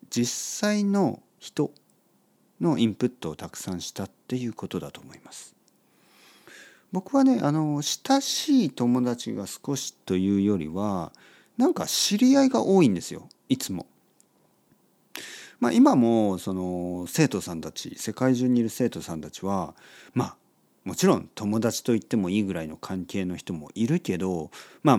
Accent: native